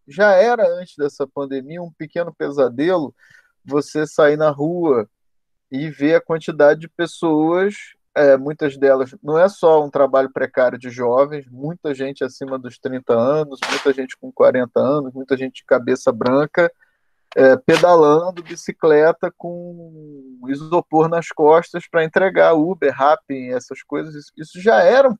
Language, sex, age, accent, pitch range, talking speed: Portuguese, male, 20-39, Brazilian, 130-175 Hz, 150 wpm